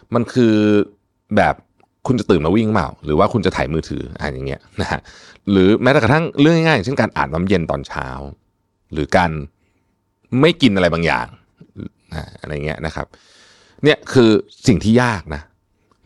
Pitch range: 80-115 Hz